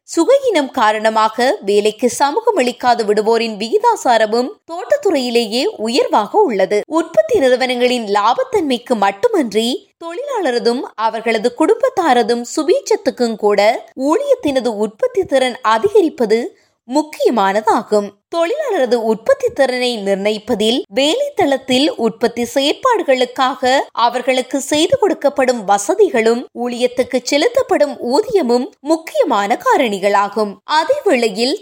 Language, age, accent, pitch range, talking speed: Tamil, 20-39, native, 230-320 Hz, 70 wpm